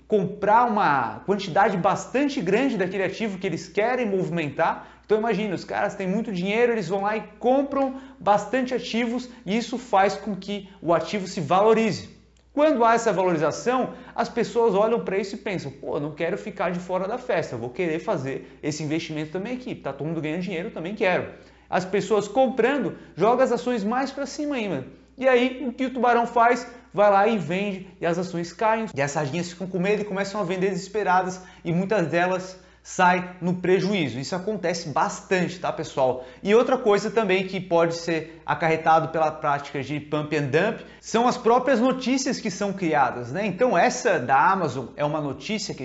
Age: 30-49